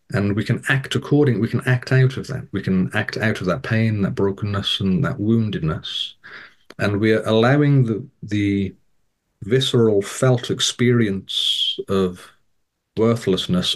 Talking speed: 145 wpm